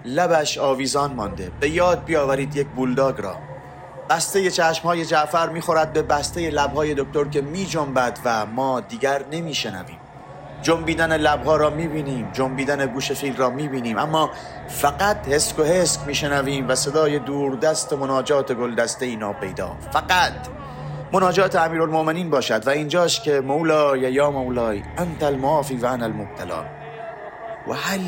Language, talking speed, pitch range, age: Persian, 135 wpm, 135-195 Hz, 30-49